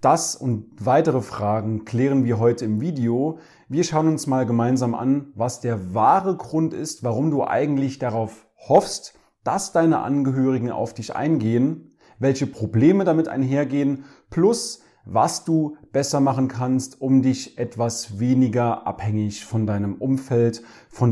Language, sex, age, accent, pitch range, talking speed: German, male, 30-49, German, 115-145 Hz, 140 wpm